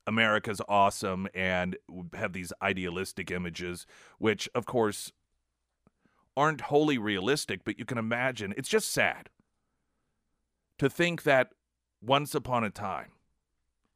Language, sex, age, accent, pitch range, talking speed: English, male, 40-59, American, 95-125 Hz, 115 wpm